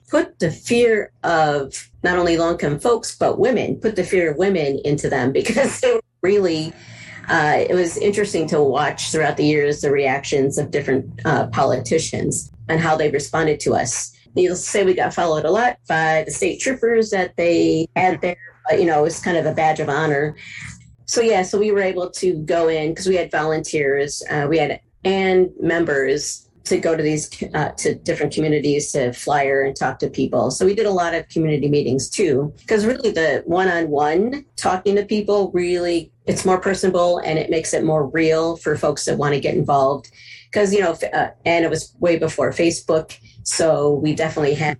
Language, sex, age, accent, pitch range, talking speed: English, female, 40-59, American, 145-180 Hz, 195 wpm